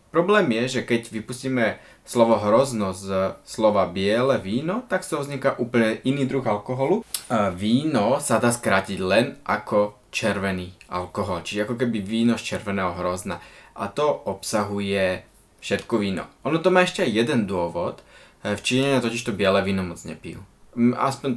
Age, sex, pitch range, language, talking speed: 20-39, male, 100-135 Hz, Slovak, 150 wpm